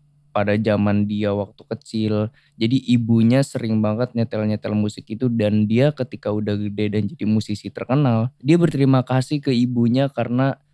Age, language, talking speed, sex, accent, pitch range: 10-29, Indonesian, 150 wpm, male, native, 110-145 Hz